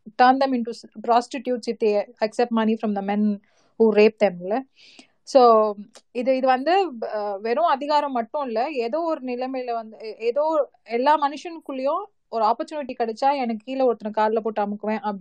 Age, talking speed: 30-49, 160 wpm